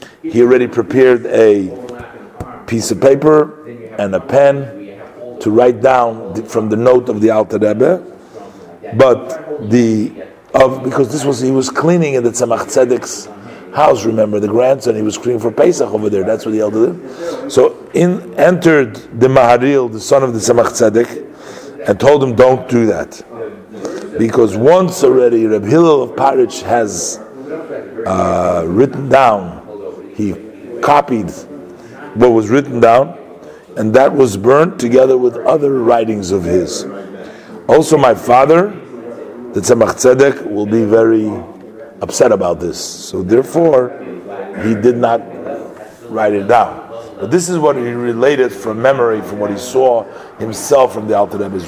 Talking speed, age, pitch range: 150 wpm, 50-69, 110-135 Hz